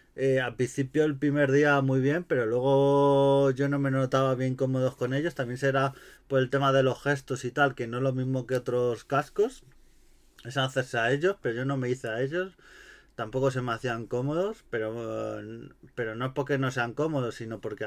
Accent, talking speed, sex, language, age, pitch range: Spanish, 210 wpm, male, Spanish, 30-49, 130-150 Hz